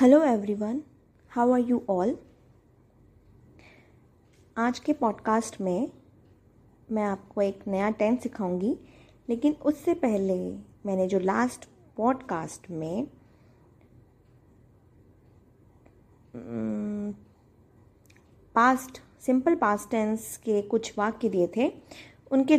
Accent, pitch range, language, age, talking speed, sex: native, 185-255 Hz, Hindi, 20-39, 90 wpm, female